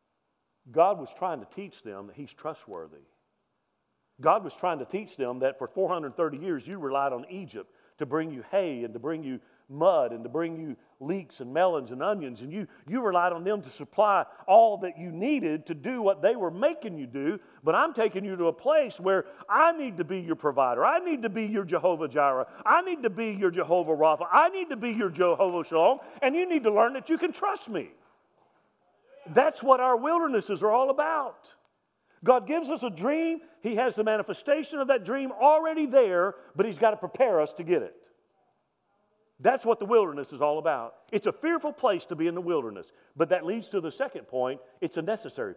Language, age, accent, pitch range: English, 50-69, American, 160-255 Hz